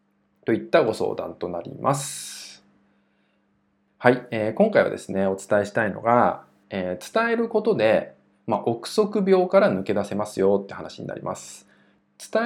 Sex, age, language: male, 20-39, Japanese